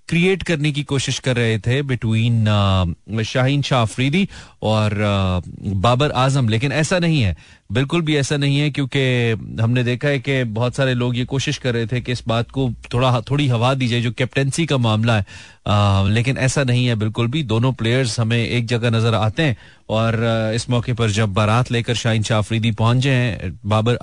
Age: 30-49